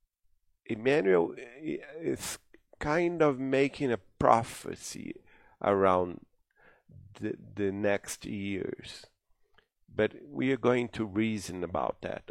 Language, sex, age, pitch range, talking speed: English, male, 50-69, 95-115 Hz, 95 wpm